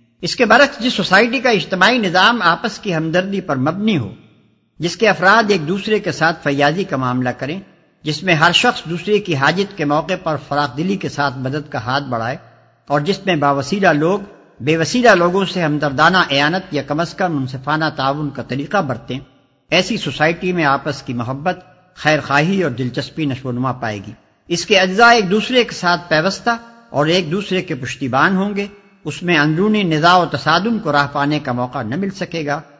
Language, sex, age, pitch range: English, male, 60-79, 140-195 Hz